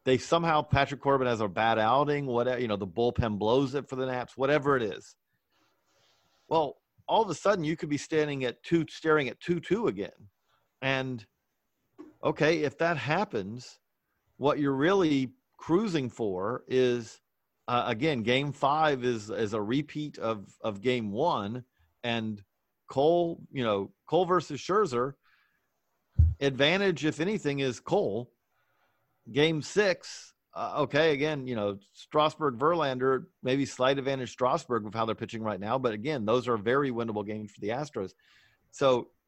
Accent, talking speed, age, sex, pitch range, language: American, 155 wpm, 40-59, male, 120-155 Hz, English